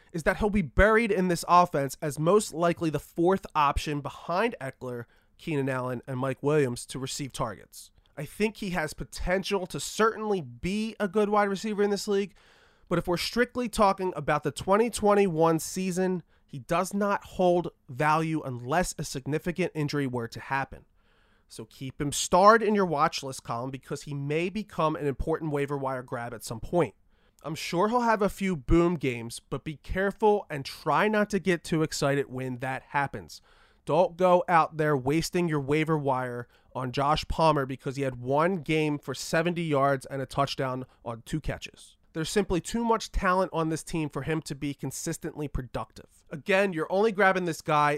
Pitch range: 135-185 Hz